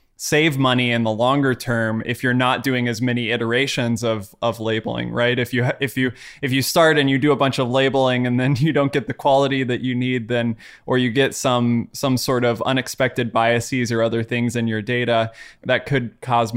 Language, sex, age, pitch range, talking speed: English, male, 20-39, 120-145 Hz, 215 wpm